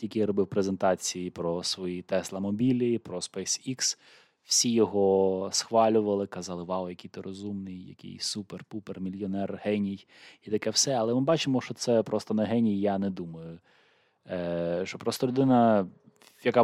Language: Ukrainian